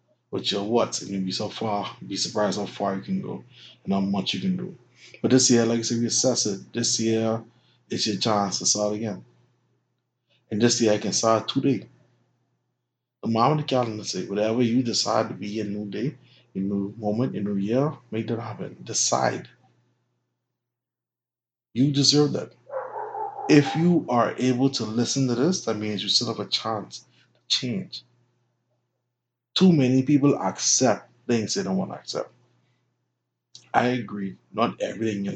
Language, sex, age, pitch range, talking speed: English, male, 20-39, 105-130 Hz, 180 wpm